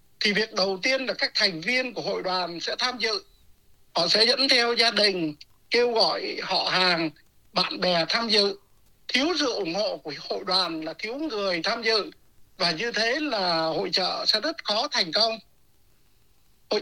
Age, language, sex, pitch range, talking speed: 60-79, Vietnamese, male, 185-270 Hz, 185 wpm